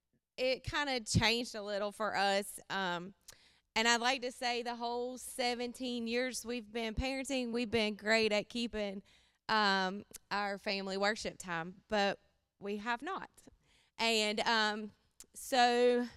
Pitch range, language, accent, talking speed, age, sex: 210-245 Hz, English, American, 140 wpm, 20-39, female